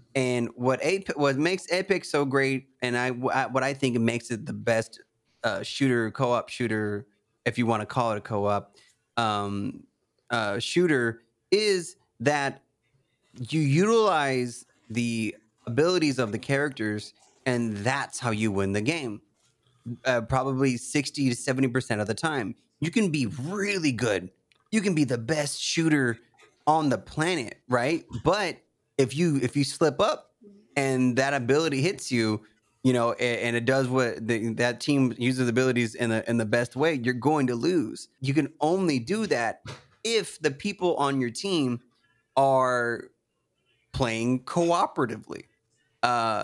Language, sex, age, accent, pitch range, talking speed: English, male, 30-49, American, 120-145 Hz, 155 wpm